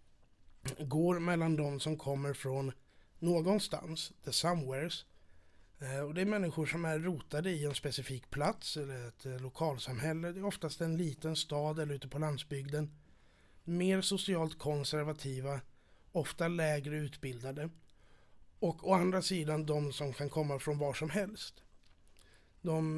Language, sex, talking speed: Swedish, male, 135 wpm